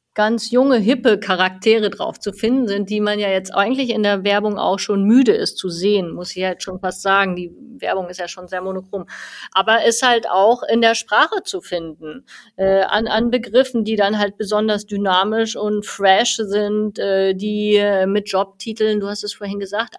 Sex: female